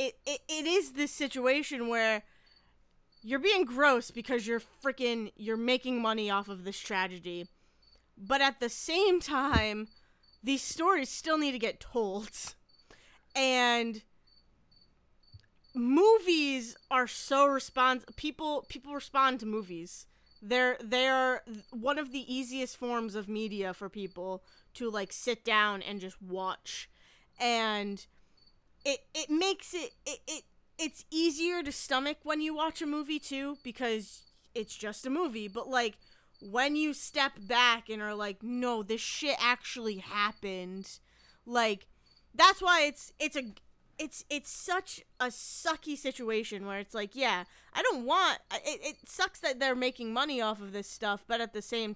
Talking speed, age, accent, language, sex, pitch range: 150 wpm, 20-39, American, English, female, 210-280 Hz